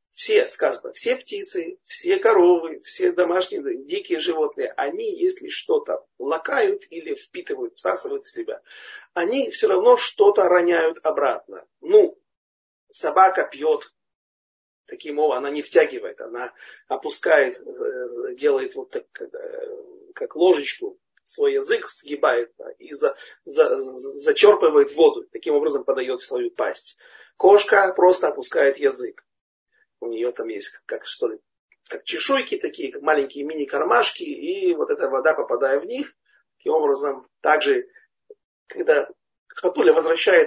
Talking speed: 115 wpm